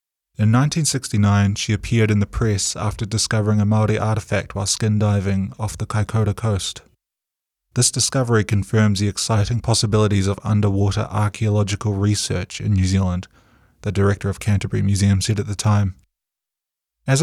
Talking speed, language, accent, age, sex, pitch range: 145 wpm, English, Australian, 20-39, male, 100-110 Hz